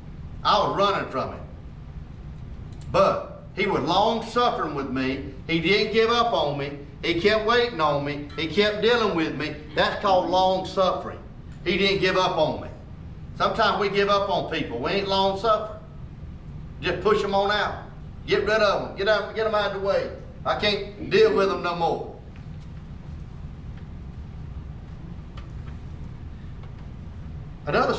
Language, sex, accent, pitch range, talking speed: English, male, American, 170-215 Hz, 150 wpm